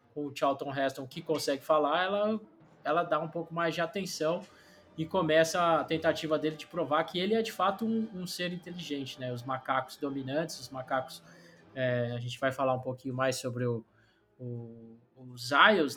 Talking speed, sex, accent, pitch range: 185 wpm, male, Brazilian, 140-180 Hz